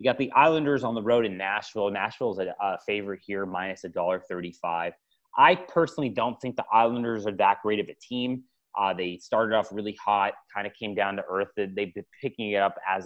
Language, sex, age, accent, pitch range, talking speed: English, male, 30-49, American, 95-120 Hz, 210 wpm